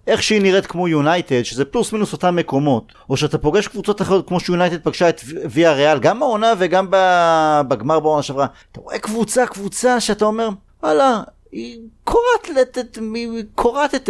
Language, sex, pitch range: Hebrew, male, 145-215 Hz